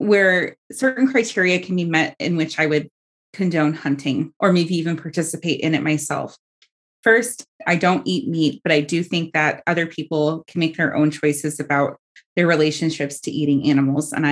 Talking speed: 180 wpm